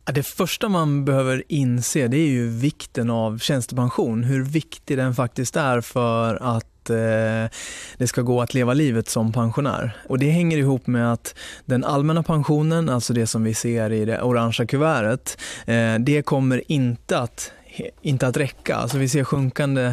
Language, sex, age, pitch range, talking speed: Swedish, male, 20-39, 115-140 Hz, 175 wpm